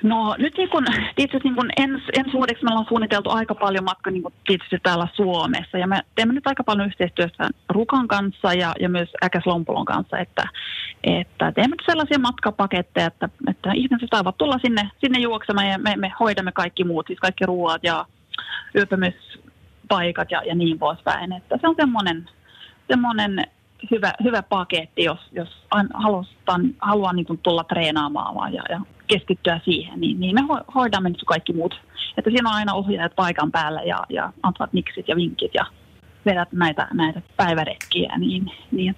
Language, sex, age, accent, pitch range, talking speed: Finnish, female, 30-49, native, 175-230 Hz, 165 wpm